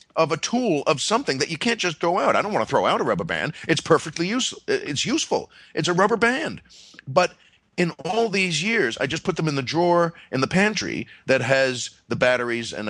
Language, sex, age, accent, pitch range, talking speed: English, male, 40-59, American, 135-170 Hz, 220 wpm